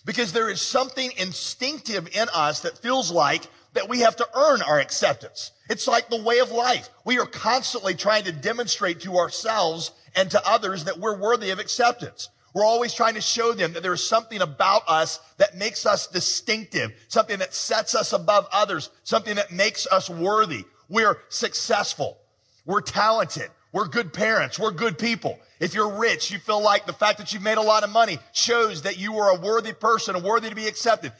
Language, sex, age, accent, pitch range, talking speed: English, male, 40-59, American, 190-235 Hz, 200 wpm